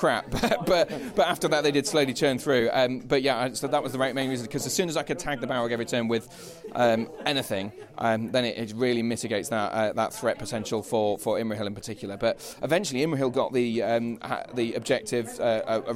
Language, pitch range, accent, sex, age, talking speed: English, 115-145 Hz, British, male, 30-49, 235 wpm